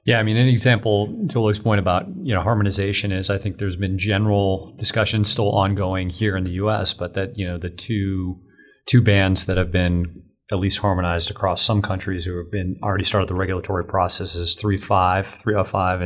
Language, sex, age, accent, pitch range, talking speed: English, male, 30-49, American, 90-105 Hz, 190 wpm